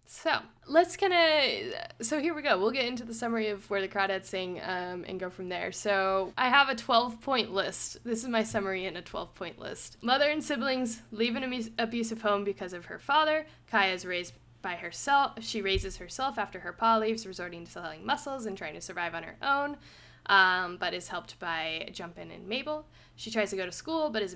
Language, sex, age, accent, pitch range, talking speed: English, female, 10-29, American, 180-255 Hz, 220 wpm